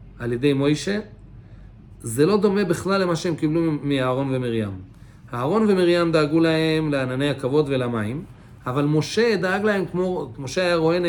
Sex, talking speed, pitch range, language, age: male, 140 wpm, 130-185 Hz, English, 40-59